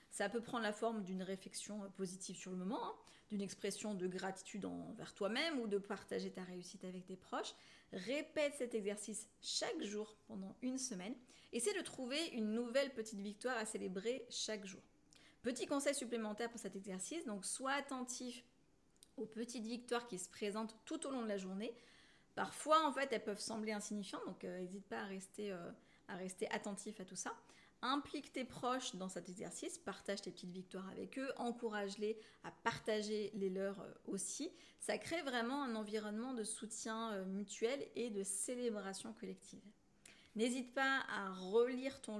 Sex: female